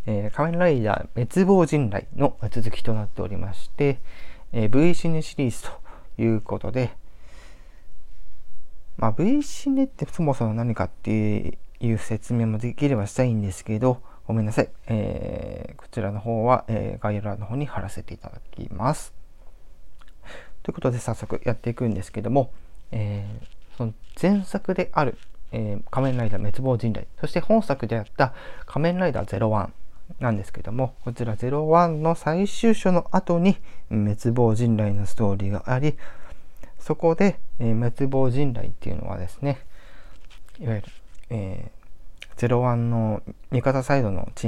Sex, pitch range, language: male, 105-135 Hz, Japanese